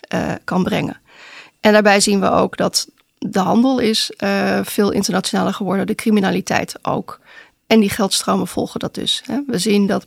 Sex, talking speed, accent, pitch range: female, 165 wpm, Dutch, 195-225 Hz